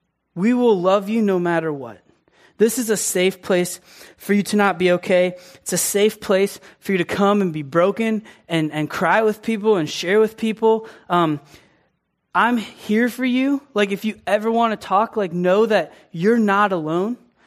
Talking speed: 190 wpm